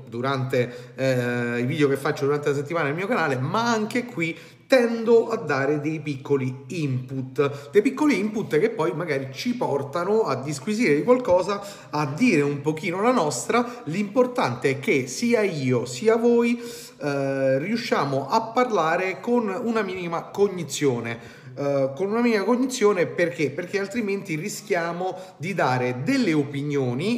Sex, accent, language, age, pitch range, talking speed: male, native, Italian, 30-49, 135-210 Hz, 150 wpm